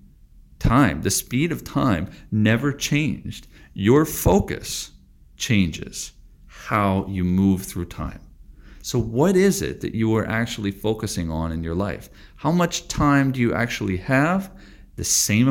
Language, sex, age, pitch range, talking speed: English, male, 40-59, 85-110 Hz, 145 wpm